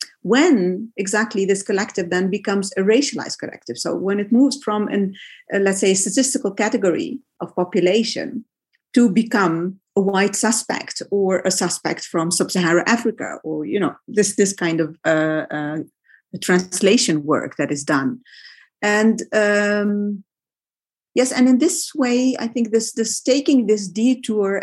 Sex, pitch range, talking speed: female, 185-240 Hz, 155 wpm